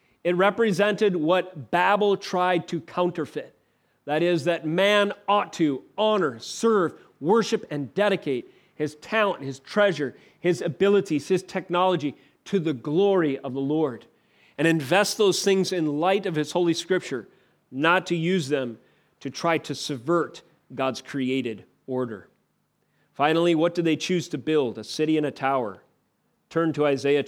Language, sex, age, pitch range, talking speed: English, male, 40-59, 145-175 Hz, 150 wpm